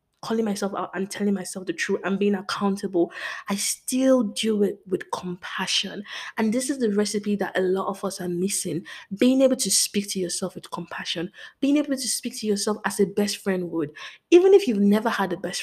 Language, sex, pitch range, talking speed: English, female, 185-235 Hz, 210 wpm